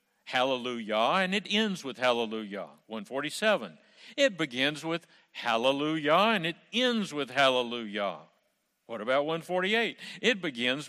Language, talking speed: English, 115 wpm